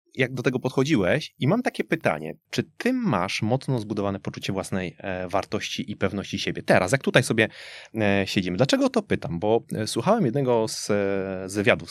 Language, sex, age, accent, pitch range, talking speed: Polish, male, 20-39, native, 95-125 Hz, 160 wpm